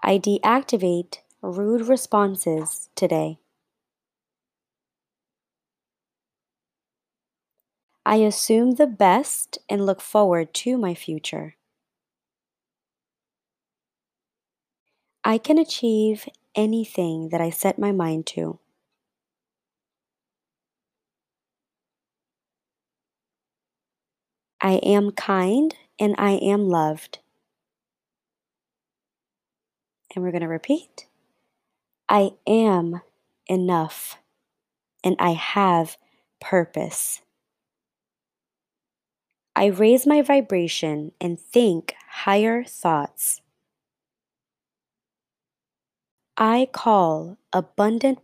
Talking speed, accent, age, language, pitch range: 70 wpm, American, 20-39, English, 165-220 Hz